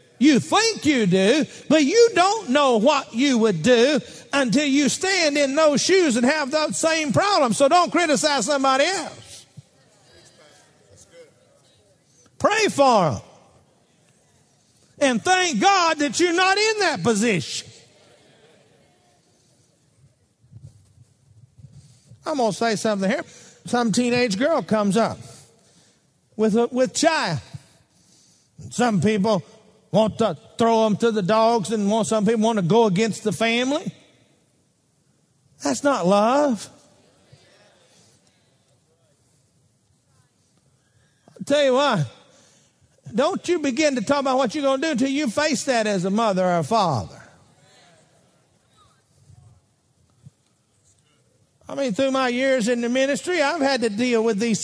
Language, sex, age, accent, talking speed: English, male, 50-69, American, 125 wpm